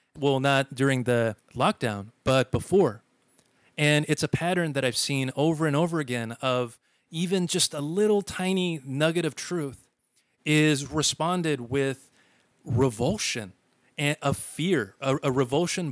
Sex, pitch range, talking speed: male, 130-160 Hz, 140 wpm